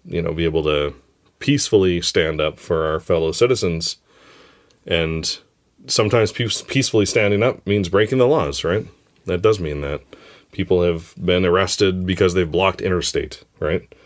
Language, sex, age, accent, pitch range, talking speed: English, male, 30-49, American, 80-110 Hz, 155 wpm